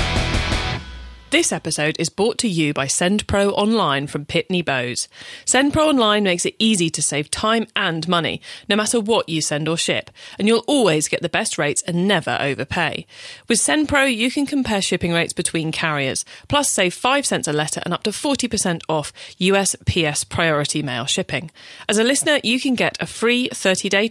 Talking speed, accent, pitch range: 180 wpm, British, 165-235 Hz